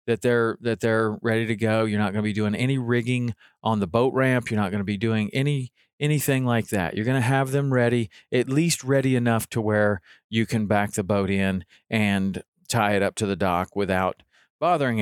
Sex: male